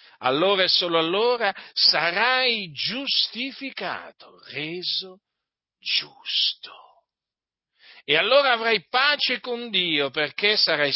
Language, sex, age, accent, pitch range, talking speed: Italian, male, 50-69, native, 165-230 Hz, 90 wpm